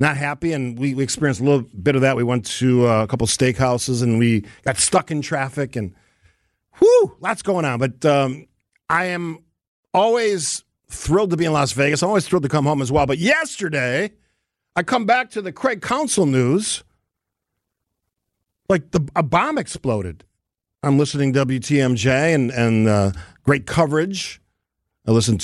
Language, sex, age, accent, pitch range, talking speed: English, male, 50-69, American, 110-170 Hz, 175 wpm